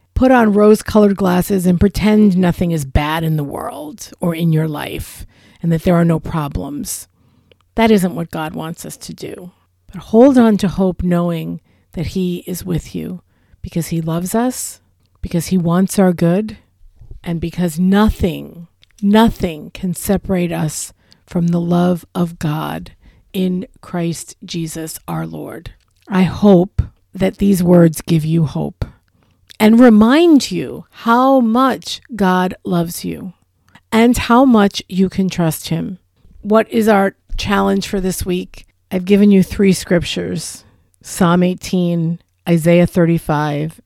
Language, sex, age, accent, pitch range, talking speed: English, female, 50-69, American, 145-195 Hz, 145 wpm